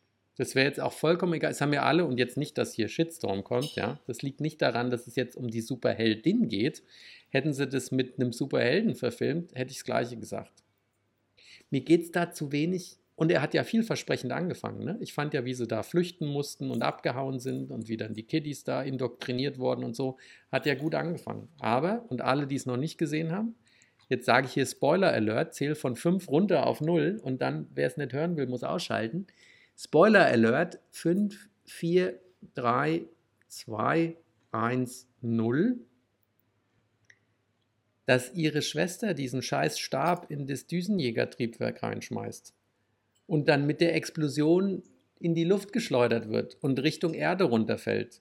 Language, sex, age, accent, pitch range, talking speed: German, male, 50-69, German, 120-170 Hz, 175 wpm